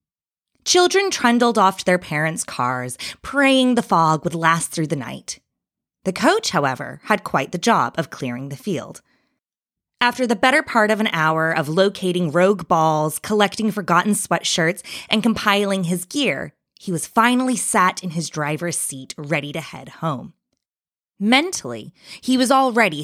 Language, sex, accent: English, female, American